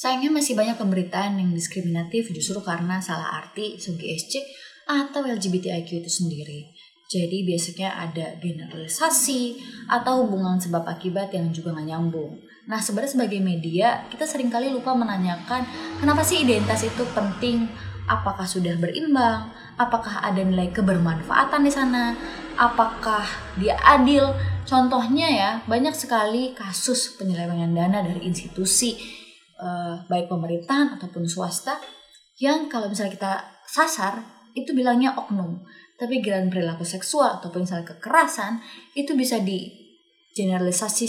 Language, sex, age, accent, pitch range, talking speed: Indonesian, female, 20-39, native, 175-245 Hz, 125 wpm